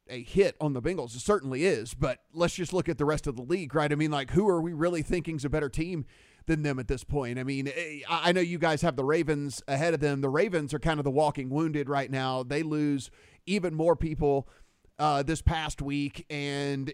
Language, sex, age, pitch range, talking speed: English, male, 30-49, 140-165 Hz, 240 wpm